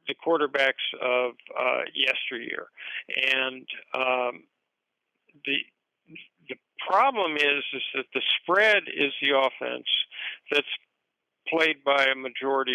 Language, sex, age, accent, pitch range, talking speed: English, male, 60-79, American, 130-165 Hz, 110 wpm